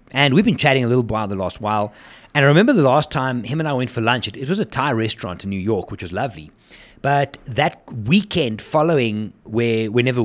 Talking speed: 235 wpm